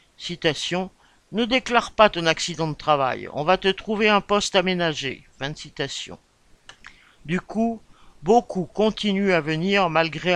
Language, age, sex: French, 50-69, male